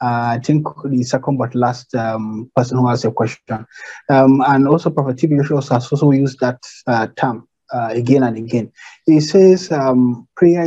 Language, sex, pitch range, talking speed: English, male, 125-160 Hz, 180 wpm